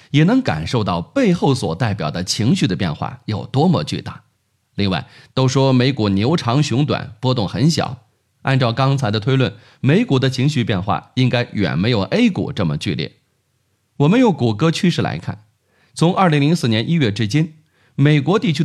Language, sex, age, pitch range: Chinese, male, 30-49, 110-150 Hz